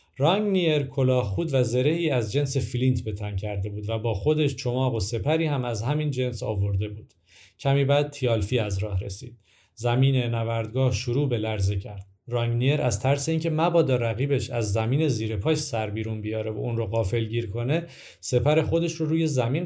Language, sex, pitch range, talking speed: Persian, male, 110-145 Hz, 175 wpm